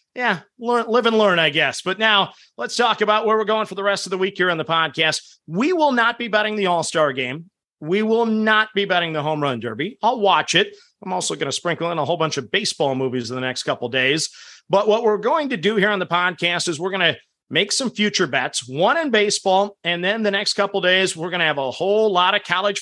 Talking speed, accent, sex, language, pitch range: 265 wpm, American, male, English, 160-210 Hz